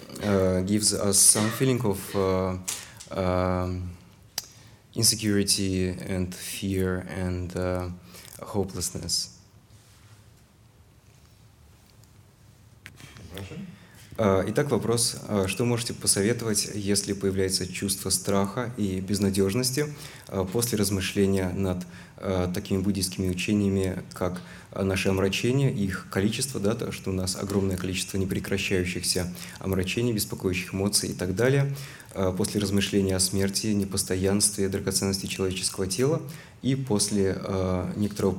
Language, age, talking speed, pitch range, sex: English, 20-39, 100 wpm, 95-105 Hz, male